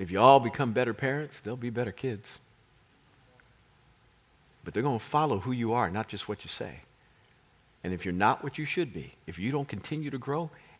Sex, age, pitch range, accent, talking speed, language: male, 50-69, 115-150 Hz, American, 200 wpm, English